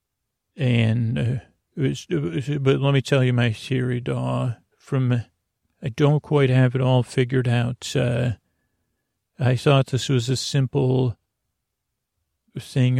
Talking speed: 145 wpm